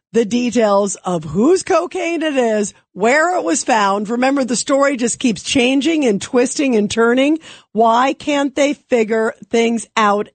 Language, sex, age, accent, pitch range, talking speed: English, female, 50-69, American, 225-275 Hz, 155 wpm